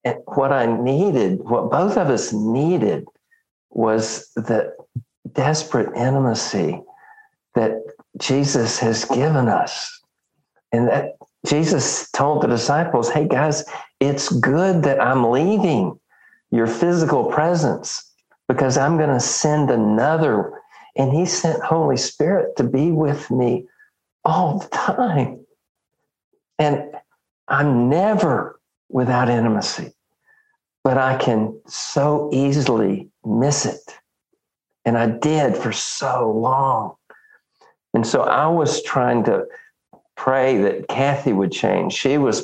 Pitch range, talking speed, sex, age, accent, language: 120-175 Hz, 115 wpm, male, 50-69, American, English